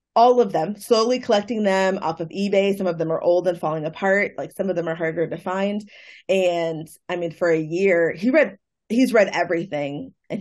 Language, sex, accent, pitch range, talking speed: English, female, American, 170-220 Hz, 215 wpm